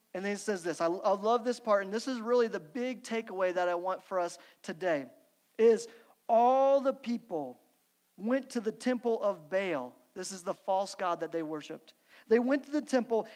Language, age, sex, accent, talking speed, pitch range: English, 40-59, male, American, 205 wpm, 205-275 Hz